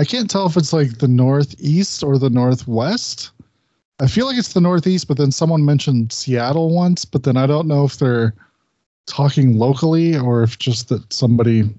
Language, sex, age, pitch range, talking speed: English, male, 20-39, 115-140 Hz, 190 wpm